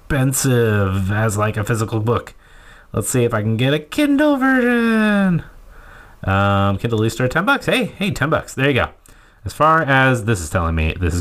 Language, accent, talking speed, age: English, American, 195 wpm, 30-49